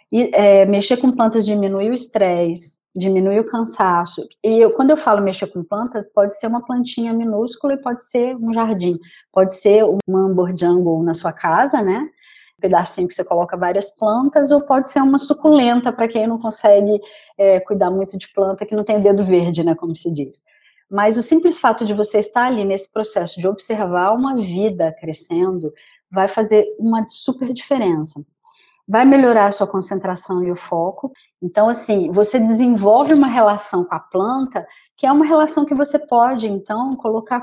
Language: Portuguese